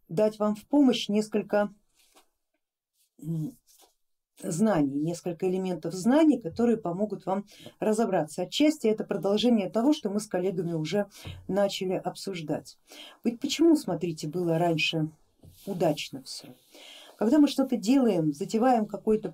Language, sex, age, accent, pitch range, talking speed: Russian, female, 40-59, native, 175-235 Hz, 115 wpm